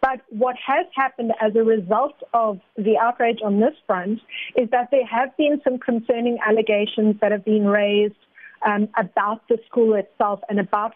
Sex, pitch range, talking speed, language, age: female, 215-245 Hz, 175 wpm, English, 40-59